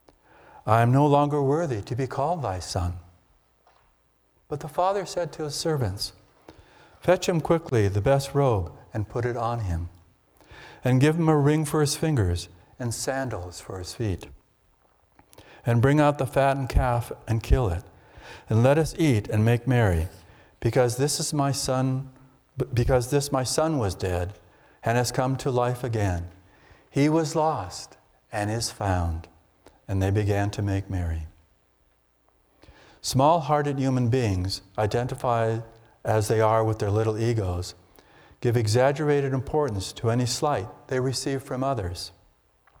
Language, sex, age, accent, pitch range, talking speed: English, male, 60-79, American, 95-140 Hz, 150 wpm